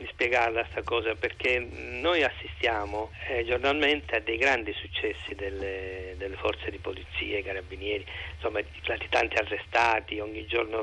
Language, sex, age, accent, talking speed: Italian, male, 40-59, native, 145 wpm